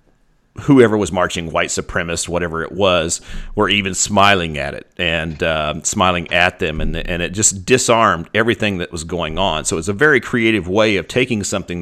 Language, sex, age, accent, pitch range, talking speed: English, male, 40-59, American, 85-110 Hz, 190 wpm